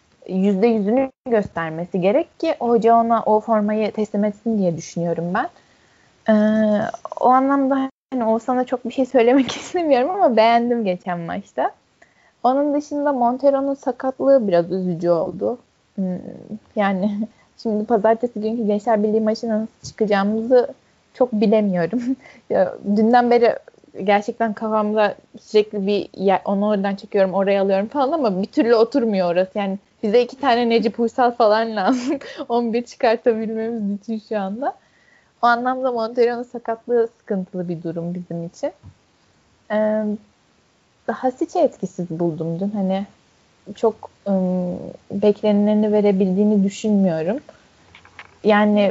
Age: 10-29